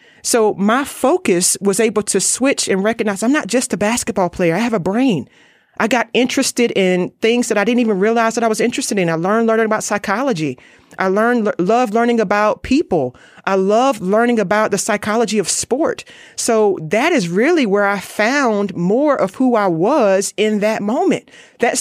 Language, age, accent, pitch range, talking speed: English, 30-49, American, 175-225 Hz, 190 wpm